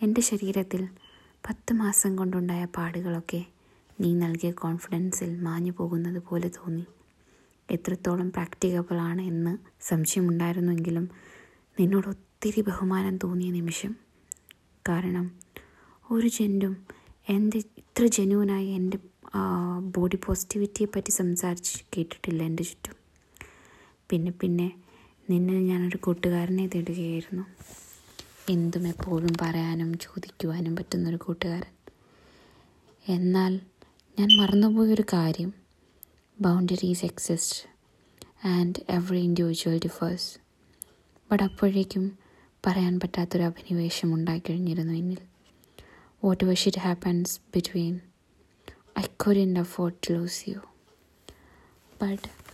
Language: Malayalam